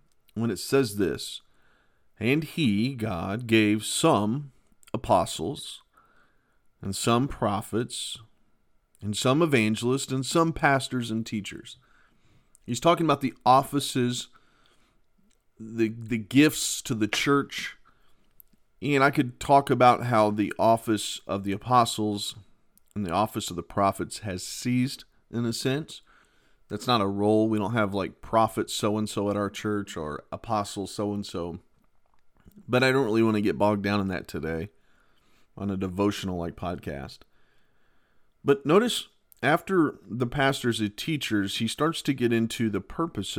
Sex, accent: male, American